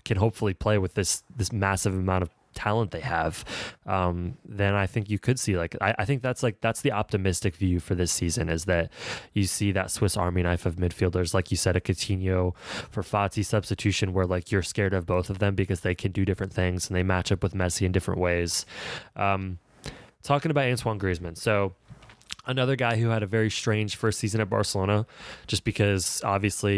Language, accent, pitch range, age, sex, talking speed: English, American, 95-110 Hz, 20-39, male, 210 wpm